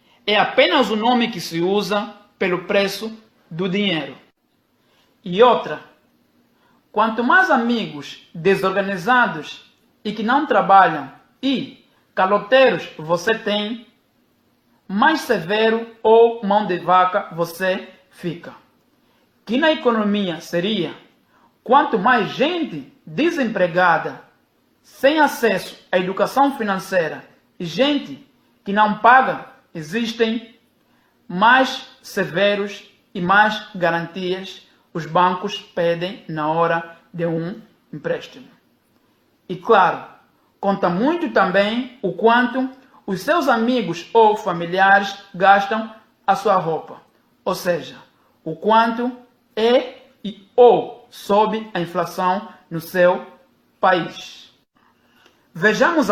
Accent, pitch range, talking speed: Brazilian, 185-240 Hz, 105 wpm